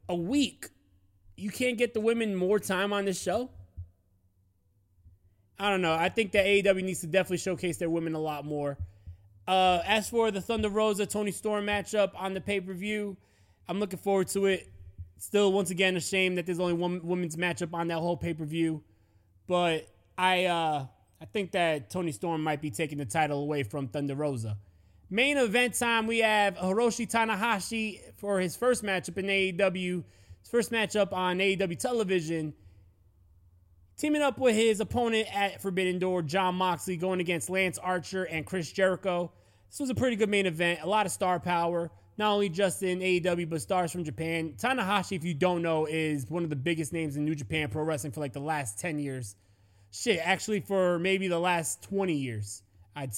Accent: American